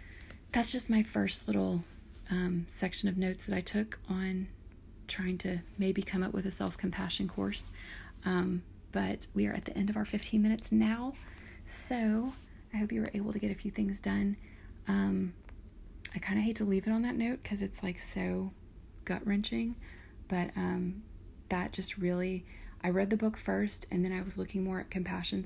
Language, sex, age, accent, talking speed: English, female, 30-49, American, 190 wpm